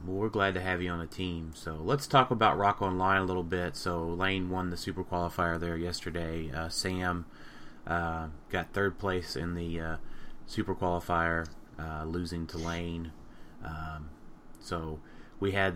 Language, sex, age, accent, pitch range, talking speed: English, male, 30-49, American, 85-100 Hz, 170 wpm